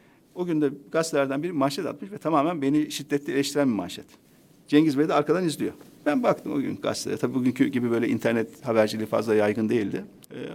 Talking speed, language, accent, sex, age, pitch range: 200 wpm, Turkish, native, male, 50-69, 140-210 Hz